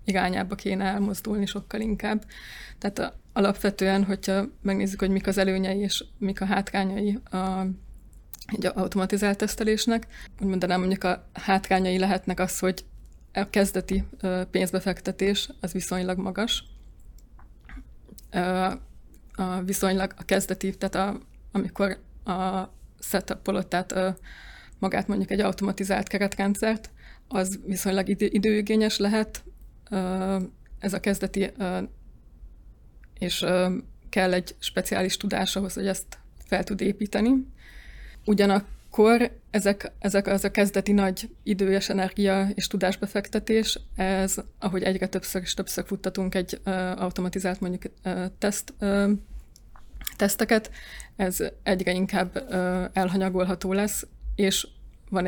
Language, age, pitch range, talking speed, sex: Hungarian, 20-39, 185-200 Hz, 105 wpm, female